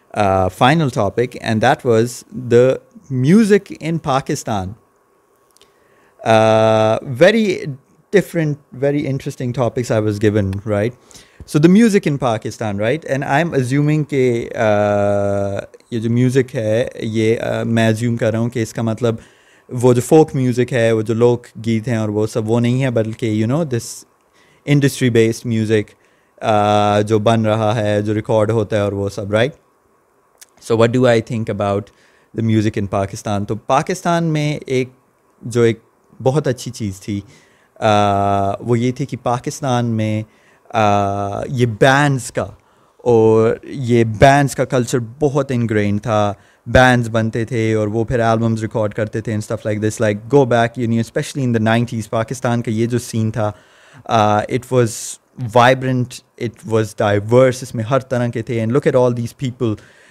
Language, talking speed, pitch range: Urdu, 130 wpm, 110-130 Hz